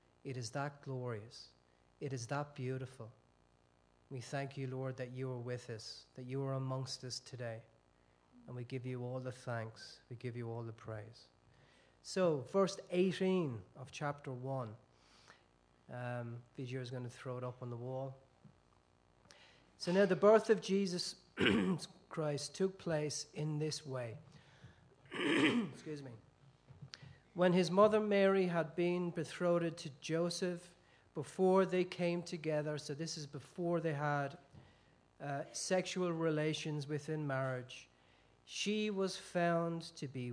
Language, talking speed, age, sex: English, 140 wpm, 40-59, male